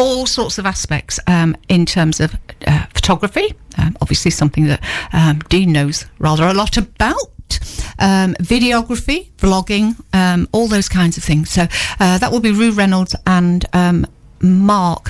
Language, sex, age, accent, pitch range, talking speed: English, female, 60-79, British, 160-195 Hz, 160 wpm